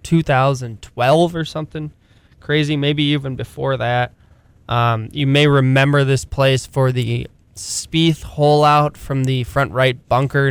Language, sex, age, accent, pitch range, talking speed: English, male, 20-39, American, 115-140 Hz, 150 wpm